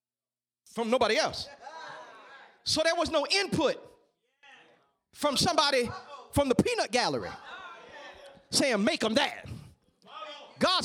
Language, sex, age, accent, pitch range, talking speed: English, male, 40-59, American, 285-410 Hz, 105 wpm